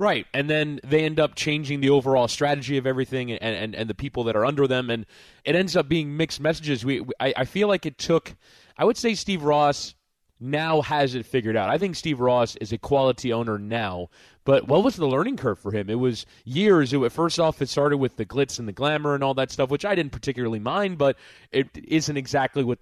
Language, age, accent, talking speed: English, 20-39, American, 240 wpm